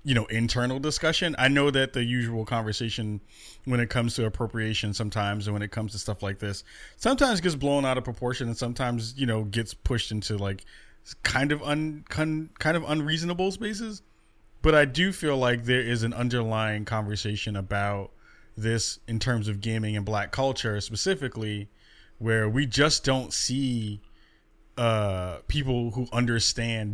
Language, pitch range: English, 105-135 Hz